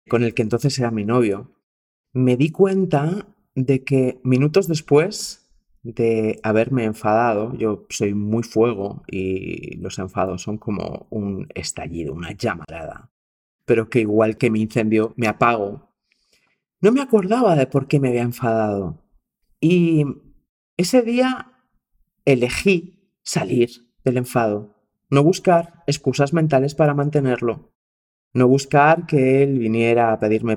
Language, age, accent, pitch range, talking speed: Spanish, 30-49, Spanish, 110-150 Hz, 130 wpm